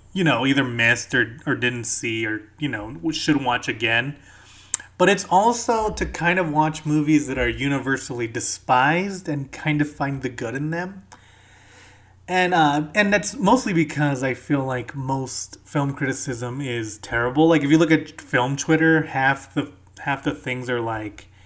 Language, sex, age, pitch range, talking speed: English, male, 30-49, 110-160 Hz, 175 wpm